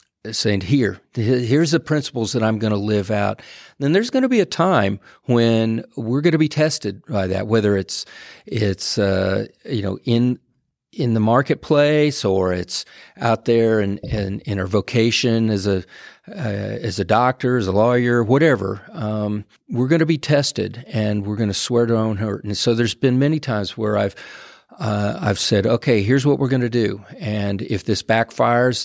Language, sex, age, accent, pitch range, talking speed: English, male, 40-59, American, 105-125 Hz, 190 wpm